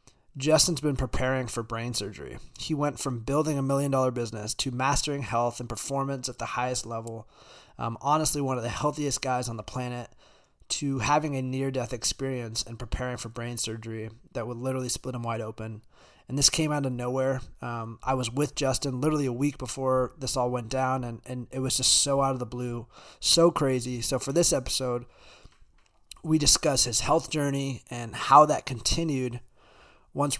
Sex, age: male, 20-39